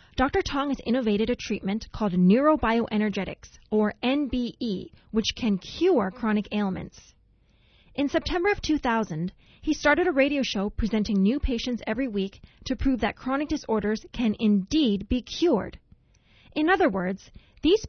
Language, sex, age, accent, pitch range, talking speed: English, female, 30-49, American, 205-275 Hz, 140 wpm